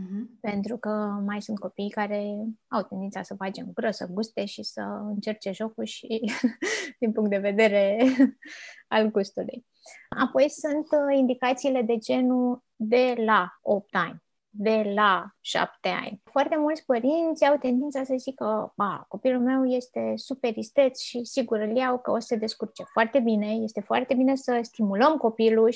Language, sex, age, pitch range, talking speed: Romanian, female, 20-39, 205-255 Hz, 160 wpm